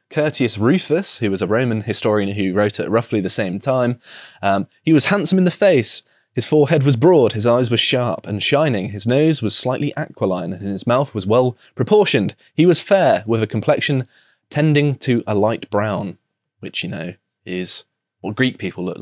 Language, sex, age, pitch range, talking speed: English, male, 20-39, 105-145 Hz, 190 wpm